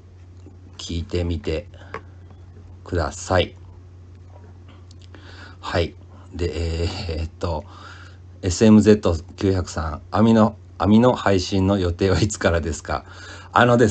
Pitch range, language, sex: 90-110 Hz, Japanese, male